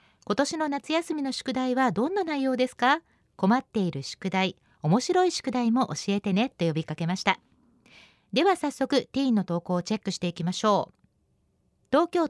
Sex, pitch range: female, 185-275 Hz